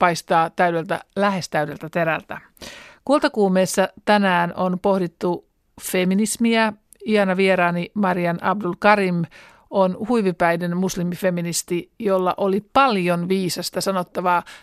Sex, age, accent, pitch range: male, 60-79, native, 180-210 Hz